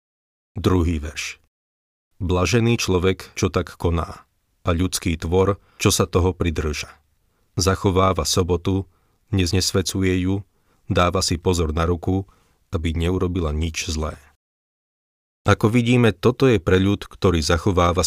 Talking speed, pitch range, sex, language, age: 115 wpm, 85-100 Hz, male, Slovak, 40-59